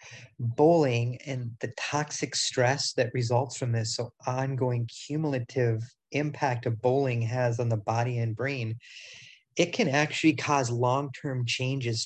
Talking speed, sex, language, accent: 140 wpm, male, English, American